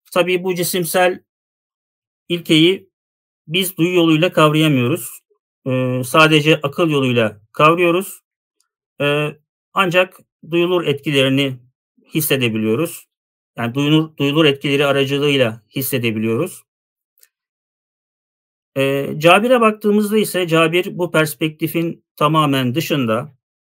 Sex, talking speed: male, 80 wpm